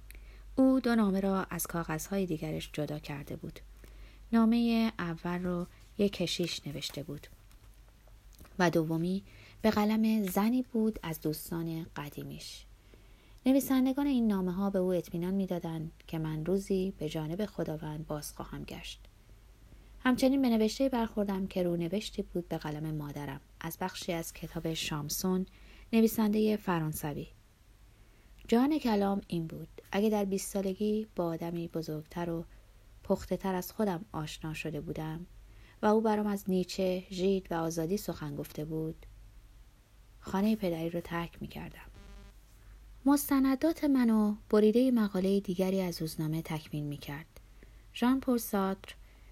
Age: 30-49